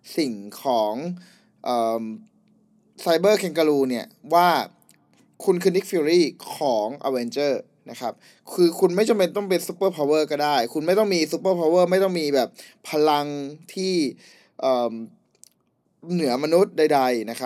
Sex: male